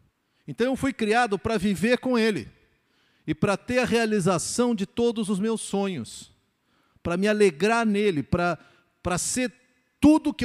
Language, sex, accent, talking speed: Portuguese, male, Brazilian, 150 wpm